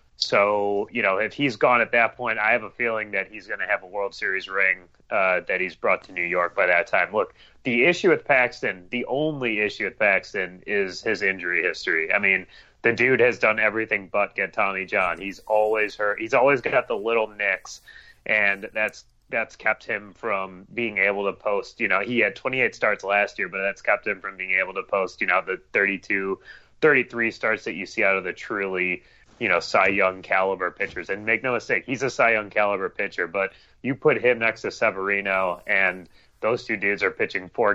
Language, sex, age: English, male, 30-49